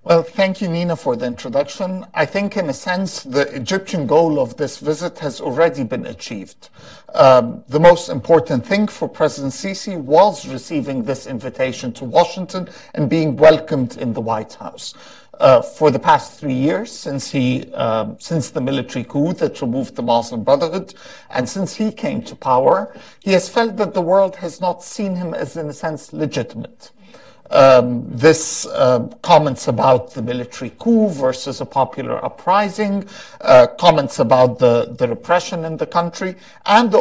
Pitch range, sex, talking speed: 135-195 Hz, male, 170 wpm